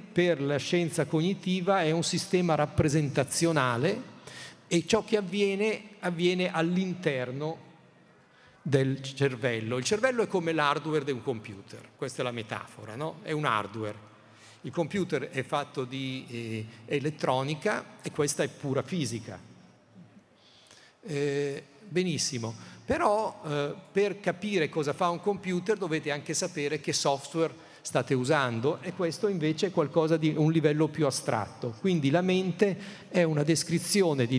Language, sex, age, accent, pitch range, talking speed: Italian, male, 50-69, native, 130-175 Hz, 135 wpm